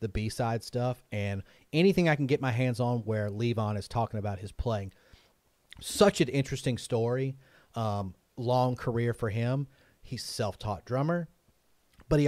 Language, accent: English, American